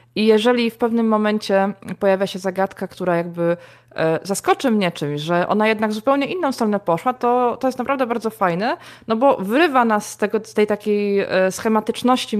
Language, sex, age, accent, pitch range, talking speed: Polish, female, 20-39, native, 180-220 Hz, 170 wpm